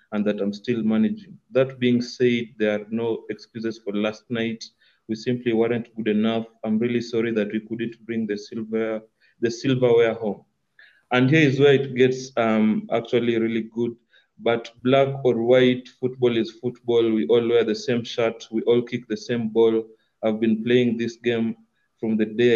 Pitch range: 110-120 Hz